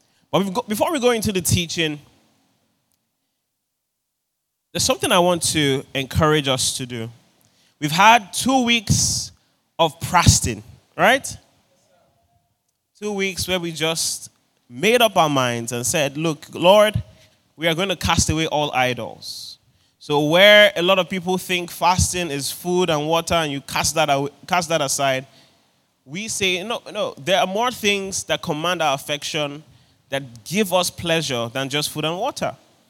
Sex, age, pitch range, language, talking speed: male, 20-39, 140-190 Hz, English, 150 wpm